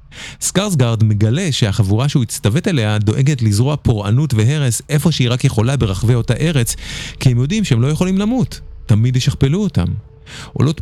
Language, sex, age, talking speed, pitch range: Hebrew, male, 30-49, 155 wpm, 110-145 Hz